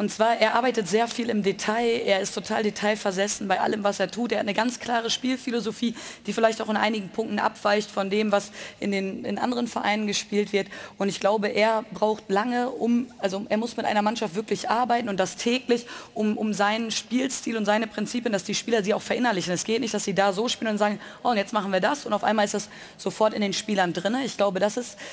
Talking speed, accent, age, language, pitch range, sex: 235 wpm, German, 30-49, German, 200-230 Hz, female